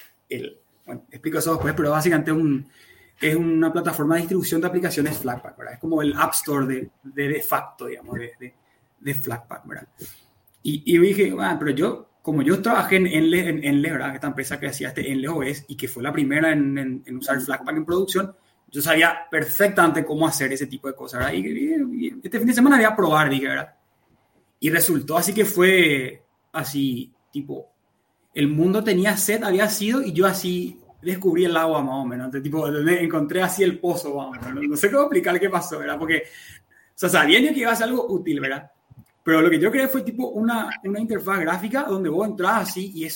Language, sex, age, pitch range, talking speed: Spanish, male, 20-39, 145-190 Hz, 205 wpm